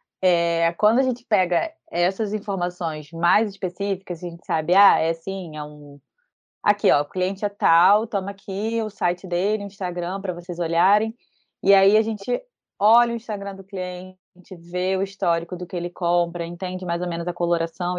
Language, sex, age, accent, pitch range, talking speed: Portuguese, female, 20-39, Brazilian, 170-205 Hz, 180 wpm